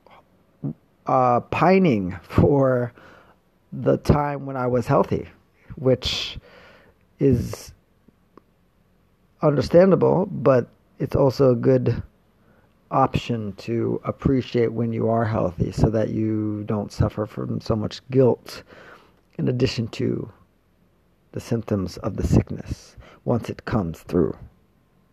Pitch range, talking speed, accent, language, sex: 105-130 Hz, 105 wpm, American, English, male